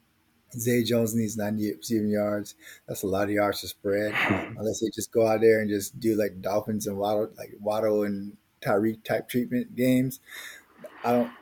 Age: 20-39